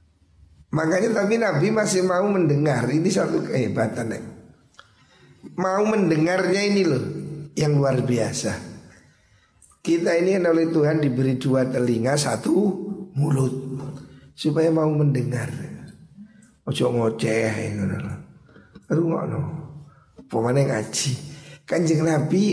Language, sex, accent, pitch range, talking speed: Indonesian, male, native, 120-155 Hz, 90 wpm